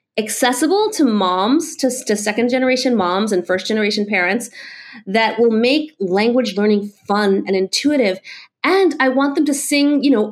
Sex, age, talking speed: female, 30-49, 165 wpm